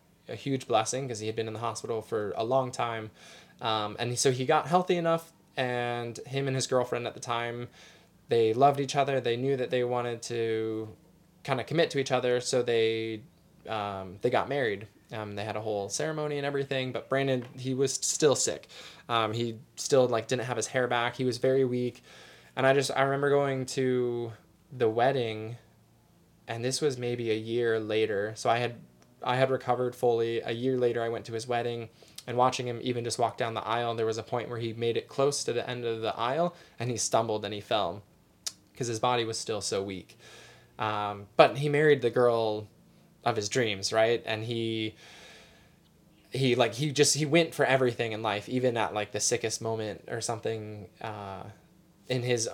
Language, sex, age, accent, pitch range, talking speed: English, male, 20-39, American, 110-130 Hz, 205 wpm